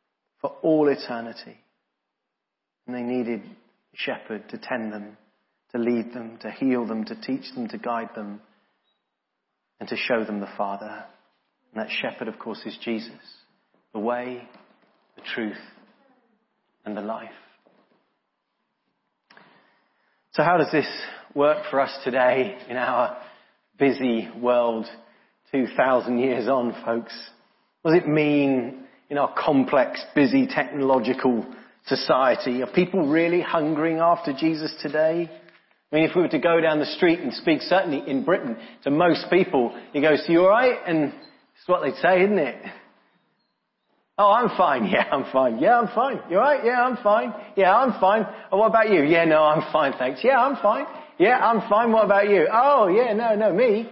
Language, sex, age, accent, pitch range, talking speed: English, male, 30-49, British, 125-210 Hz, 165 wpm